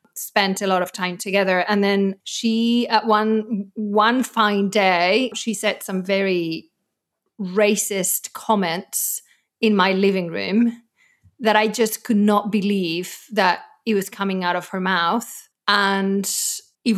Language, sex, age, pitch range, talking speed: English, female, 30-49, 195-235 Hz, 140 wpm